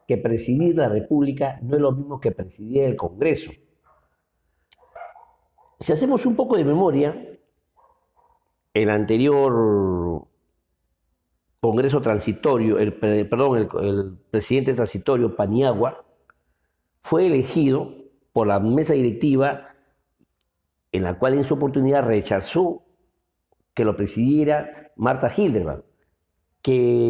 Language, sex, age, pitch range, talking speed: Spanish, male, 50-69, 100-155 Hz, 105 wpm